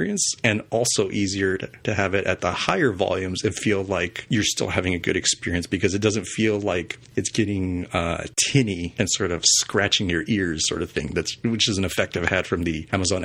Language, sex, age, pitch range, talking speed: English, male, 30-49, 95-115 Hz, 215 wpm